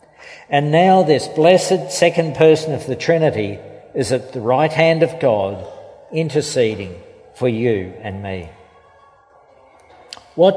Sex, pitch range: male, 125-165 Hz